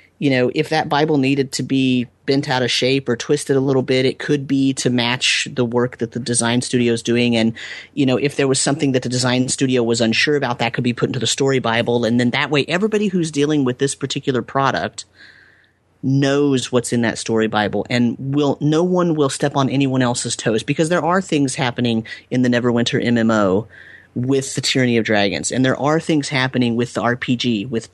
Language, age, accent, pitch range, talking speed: English, 30-49, American, 120-145 Hz, 220 wpm